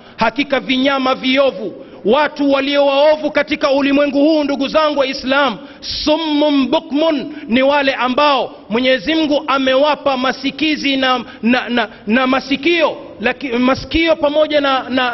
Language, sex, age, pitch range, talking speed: Swahili, male, 40-59, 195-270 Hz, 125 wpm